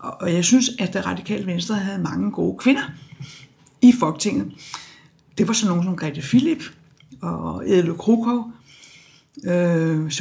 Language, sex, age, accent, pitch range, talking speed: Danish, female, 60-79, native, 155-225 Hz, 140 wpm